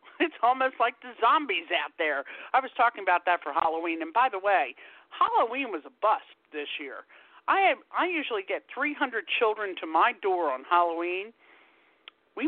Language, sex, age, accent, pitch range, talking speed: English, male, 50-69, American, 165-245 Hz, 180 wpm